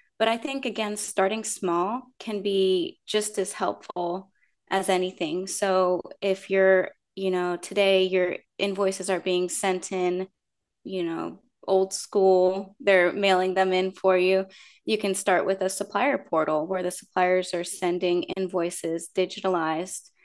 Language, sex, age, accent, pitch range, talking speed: English, female, 20-39, American, 185-205 Hz, 145 wpm